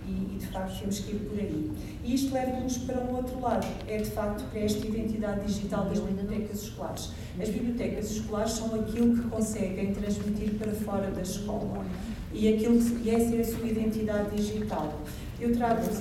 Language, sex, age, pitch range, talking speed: Portuguese, female, 40-59, 195-225 Hz, 185 wpm